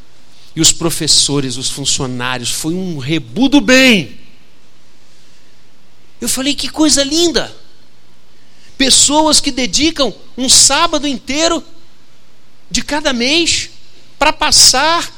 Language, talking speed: Portuguese, 105 wpm